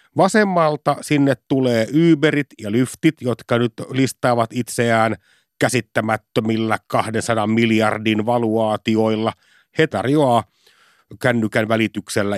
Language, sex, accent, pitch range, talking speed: Finnish, male, native, 105-130 Hz, 85 wpm